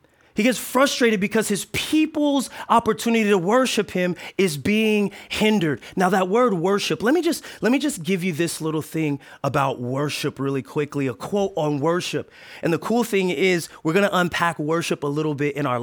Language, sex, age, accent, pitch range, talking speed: English, male, 30-49, American, 160-220 Hz, 185 wpm